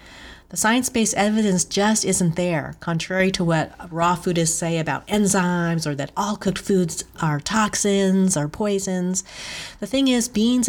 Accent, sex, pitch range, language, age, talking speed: American, female, 155-195 Hz, English, 40-59, 150 wpm